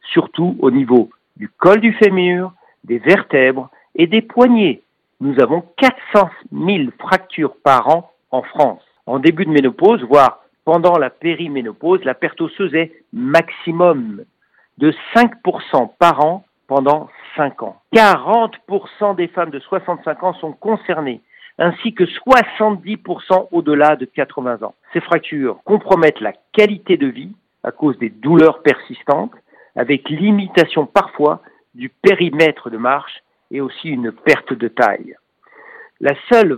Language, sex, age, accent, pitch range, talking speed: French, male, 50-69, French, 145-200 Hz, 135 wpm